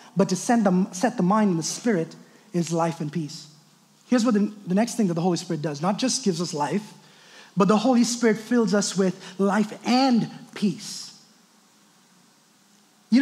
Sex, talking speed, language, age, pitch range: male, 185 wpm, English, 30-49, 195-295 Hz